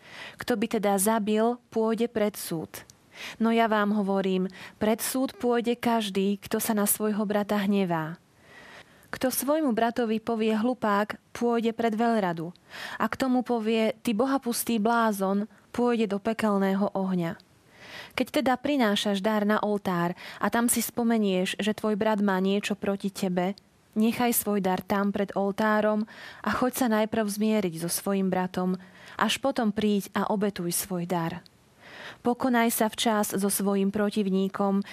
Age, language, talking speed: 20-39, Slovak, 145 wpm